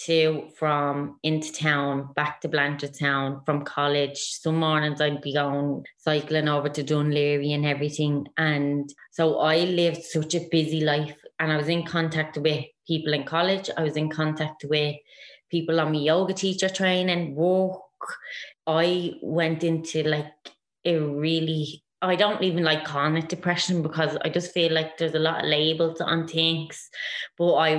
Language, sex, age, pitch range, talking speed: English, female, 20-39, 155-180 Hz, 165 wpm